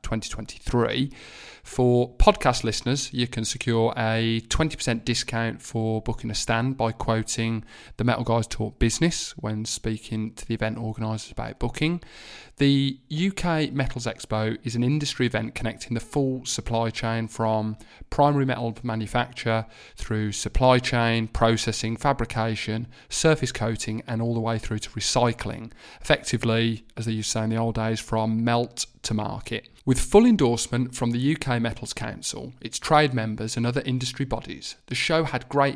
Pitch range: 110-130 Hz